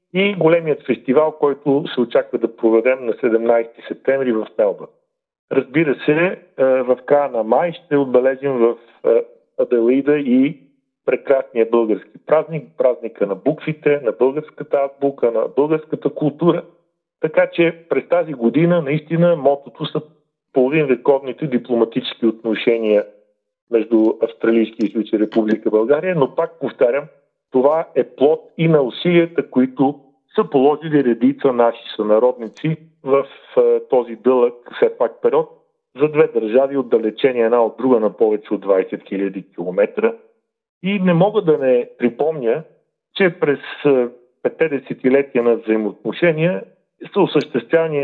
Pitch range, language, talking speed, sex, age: 125-175 Hz, Bulgarian, 125 wpm, male, 40-59